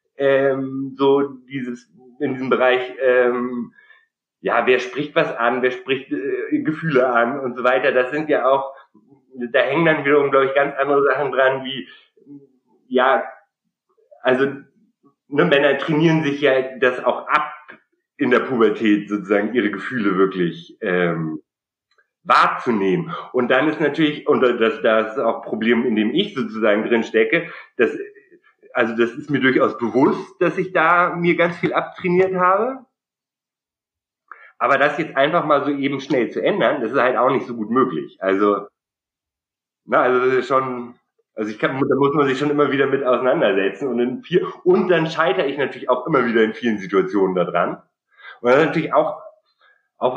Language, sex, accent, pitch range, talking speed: German, male, German, 120-160 Hz, 170 wpm